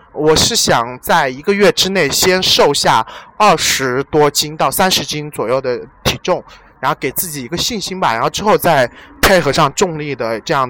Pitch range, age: 140-195 Hz, 20-39